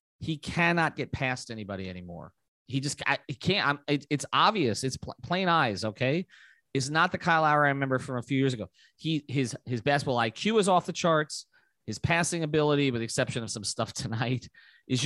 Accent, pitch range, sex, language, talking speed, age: American, 120-160 Hz, male, English, 205 wpm, 30-49